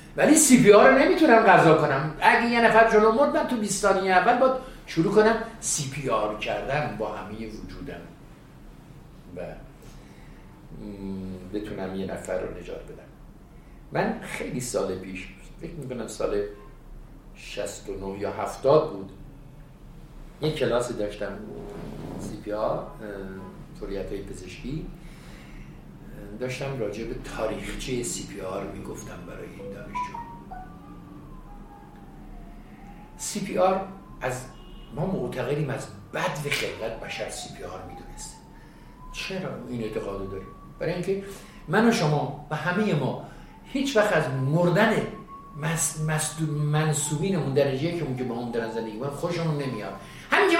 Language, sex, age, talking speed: Persian, male, 50-69, 135 wpm